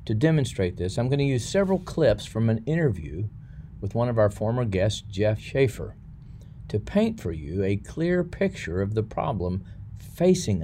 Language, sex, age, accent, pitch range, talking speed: English, male, 50-69, American, 100-135 Hz, 175 wpm